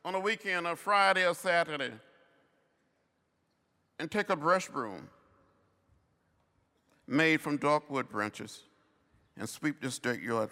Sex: male